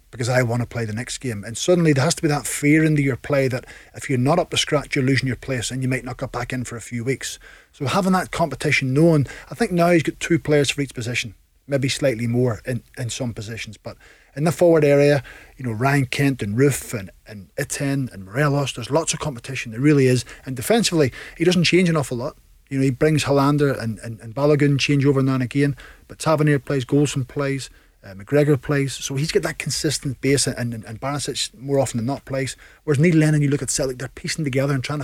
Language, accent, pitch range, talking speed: English, British, 125-150 Hz, 245 wpm